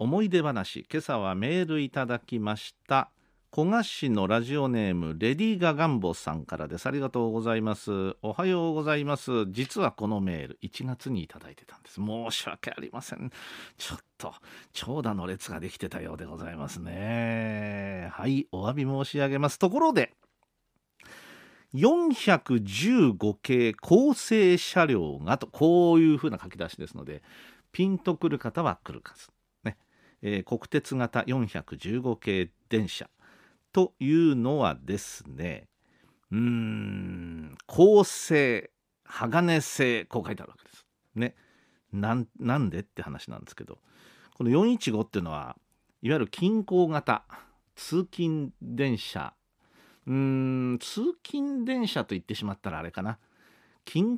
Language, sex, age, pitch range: Japanese, male, 50-69, 105-160 Hz